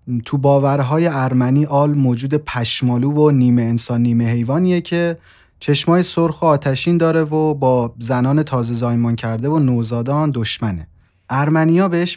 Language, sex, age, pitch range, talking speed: English, male, 30-49, 120-155 Hz, 140 wpm